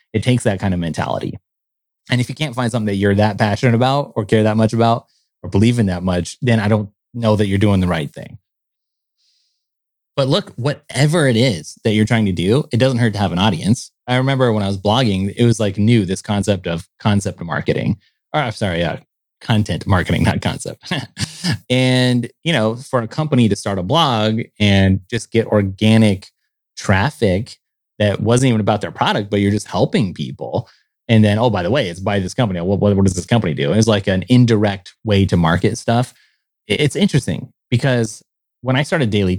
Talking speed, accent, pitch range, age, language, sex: 205 wpm, American, 100-120 Hz, 30-49, English, male